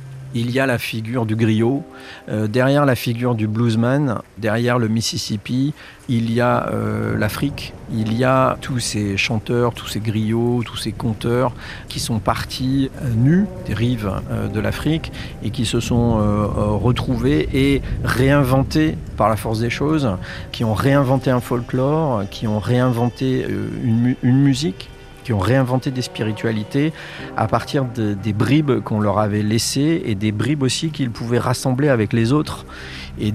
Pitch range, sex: 105-130 Hz, male